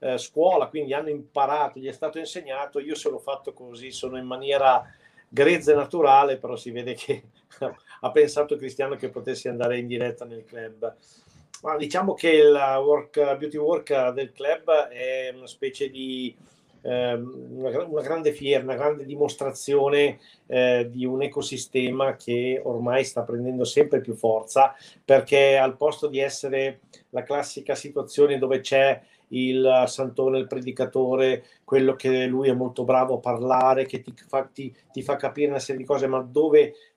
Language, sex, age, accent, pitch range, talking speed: Italian, male, 50-69, native, 130-150 Hz, 165 wpm